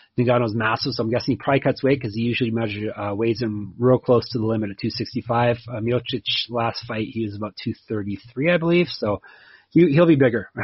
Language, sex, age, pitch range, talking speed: English, male, 30-49, 110-135 Hz, 215 wpm